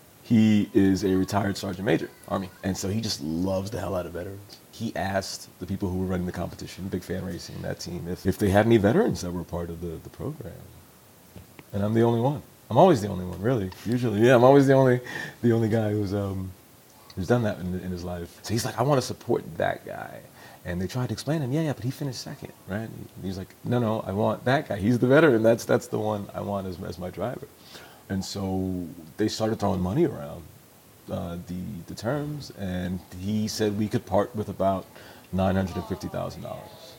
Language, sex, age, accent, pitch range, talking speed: English, male, 30-49, American, 95-115 Hz, 230 wpm